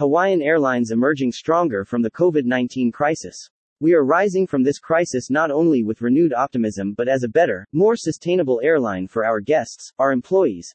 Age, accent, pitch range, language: 30-49, American, 120-165 Hz, English